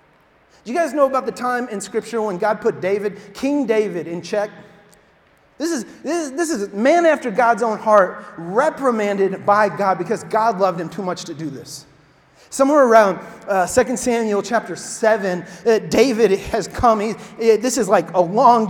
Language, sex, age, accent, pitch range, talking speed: English, male, 30-49, American, 210-260 Hz, 185 wpm